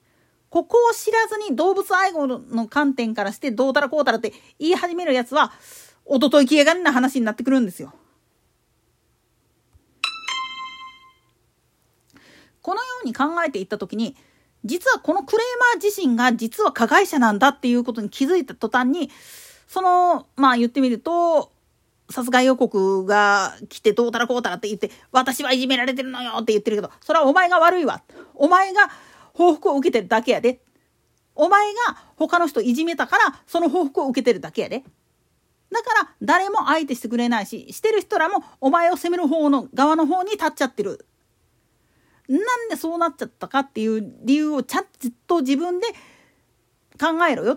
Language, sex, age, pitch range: Japanese, female, 40-59, 245-350 Hz